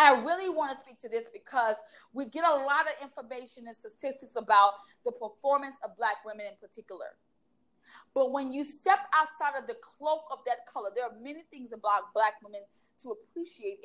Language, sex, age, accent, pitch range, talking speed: English, female, 40-59, American, 235-315 Hz, 190 wpm